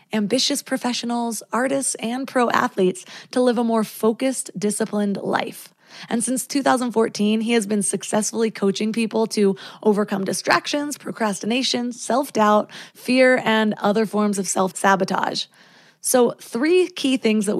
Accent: American